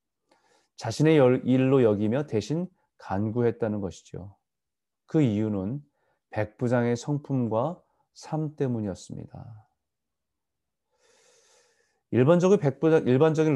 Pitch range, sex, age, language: 110-150 Hz, male, 30-49, Korean